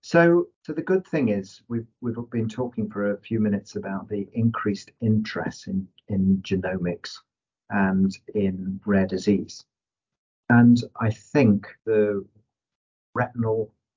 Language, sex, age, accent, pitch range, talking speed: English, male, 40-59, British, 100-120 Hz, 135 wpm